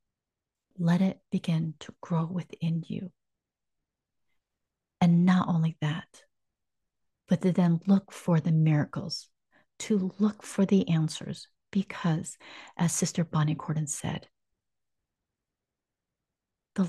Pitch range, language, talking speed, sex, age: 160-195 Hz, English, 105 wpm, female, 40-59